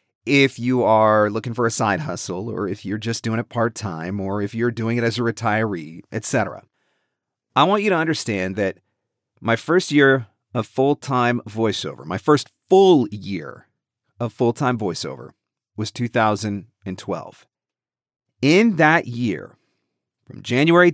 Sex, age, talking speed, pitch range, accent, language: male, 40-59, 145 wpm, 115-145 Hz, American, English